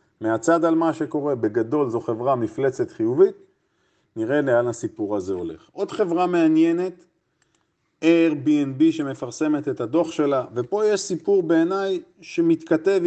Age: 40-59